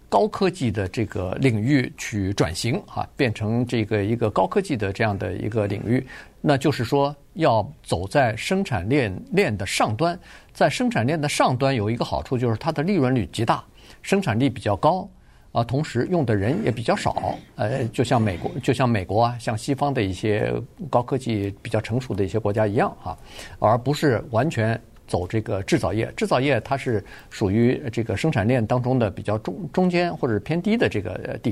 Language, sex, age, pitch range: Chinese, male, 50-69, 105-135 Hz